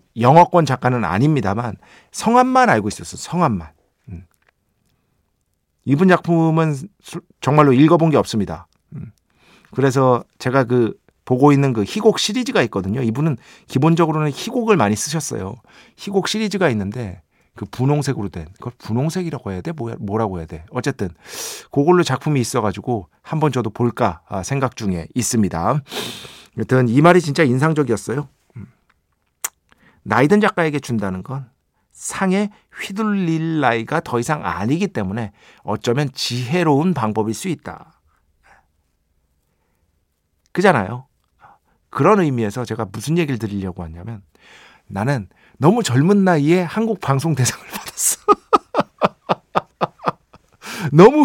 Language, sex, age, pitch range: Korean, male, 50-69, 105-165 Hz